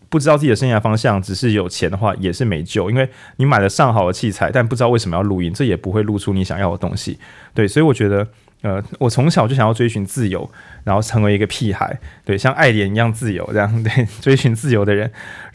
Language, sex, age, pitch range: Chinese, male, 20-39, 100-125 Hz